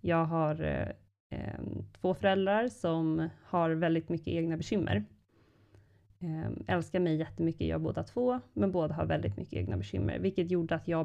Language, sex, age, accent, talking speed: Swedish, female, 20-39, native, 145 wpm